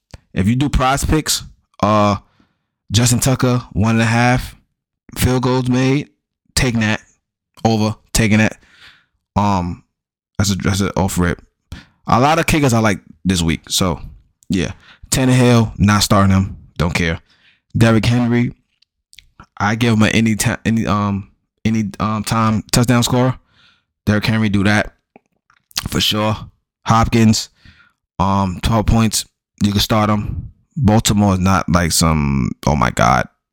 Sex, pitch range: male, 90-115 Hz